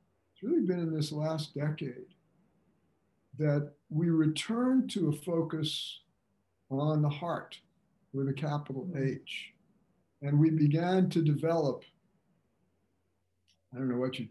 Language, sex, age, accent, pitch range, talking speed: English, male, 50-69, American, 135-165 Hz, 125 wpm